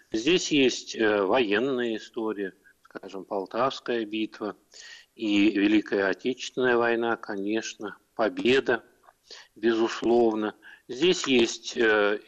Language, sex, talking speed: Russian, male, 80 wpm